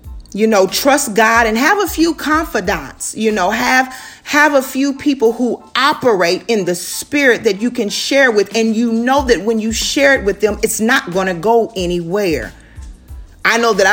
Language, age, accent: English, 40-59, American